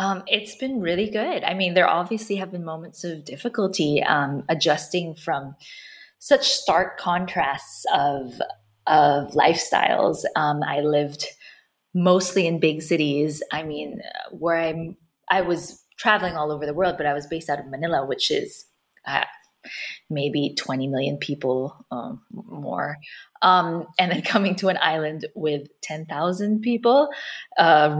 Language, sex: English, female